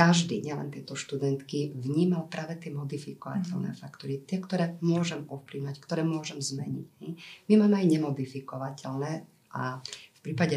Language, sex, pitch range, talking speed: Slovak, female, 135-165 Hz, 130 wpm